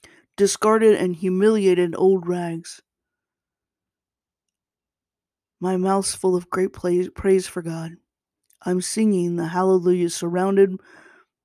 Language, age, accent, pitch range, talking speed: English, 20-39, American, 175-200 Hz, 95 wpm